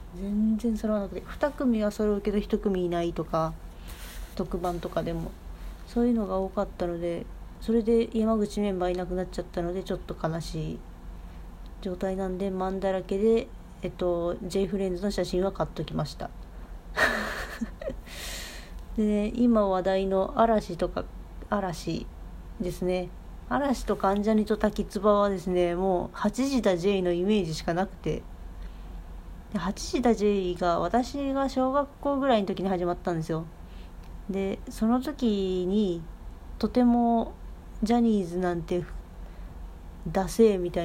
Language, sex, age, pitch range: Japanese, female, 40-59, 170-215 Hz